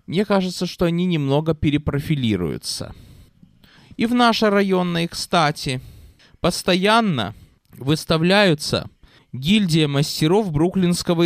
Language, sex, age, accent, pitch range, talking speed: Russian, male, 20-39, native, 125-190 Hz, 85 wpm